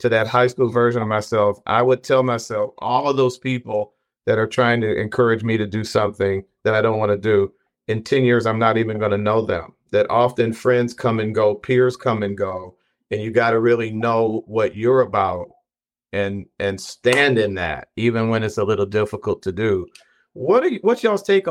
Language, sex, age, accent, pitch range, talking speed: English, male, 50-69, American, 110-135 Hz, 220 wpm